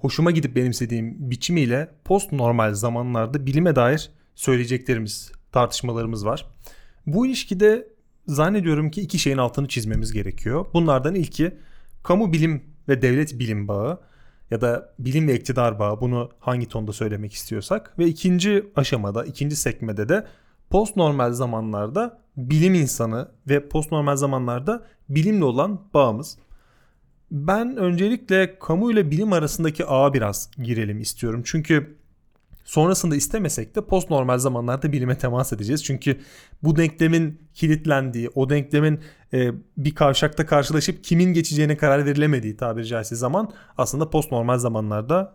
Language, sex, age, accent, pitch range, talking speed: Turkish, male, 30-49, native, 120-165 Hz, 125 wpm